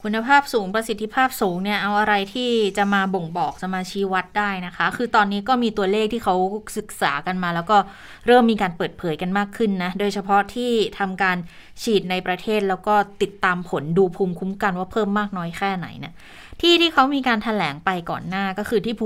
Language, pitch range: Thai, 180-215 Hz